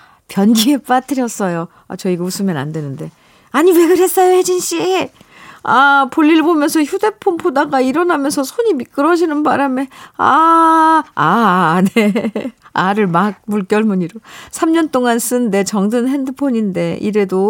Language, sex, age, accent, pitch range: Korean, female, 50-69, native, 190-270 Hz